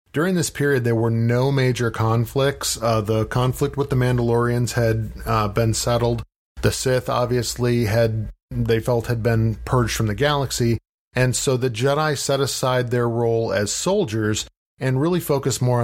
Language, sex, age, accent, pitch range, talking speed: English, male, 40-59, American, 110-125 Hz, 165 wpm